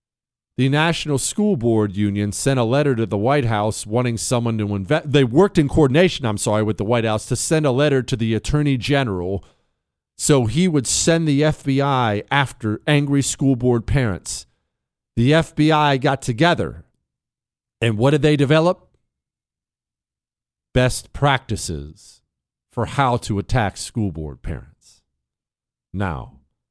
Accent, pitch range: American, 100-135 Hz